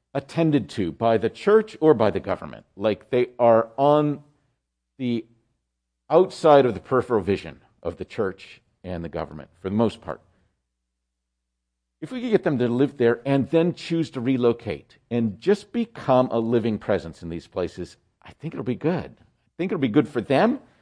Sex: male